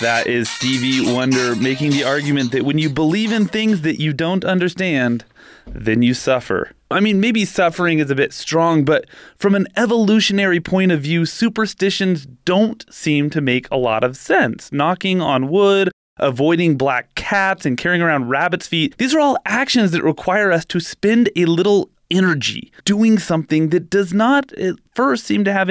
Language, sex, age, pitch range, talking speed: English, male, 30-49, 150-200 Hz, 180 wpm